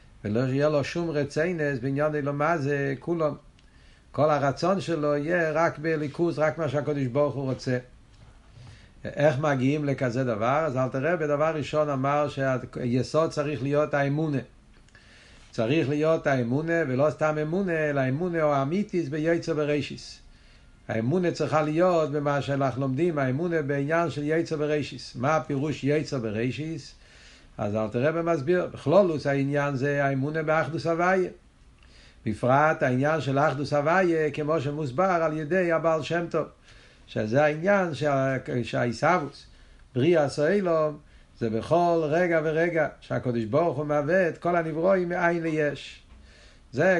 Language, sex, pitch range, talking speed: Hebrew, male, 135-165 Hz, 135 wpm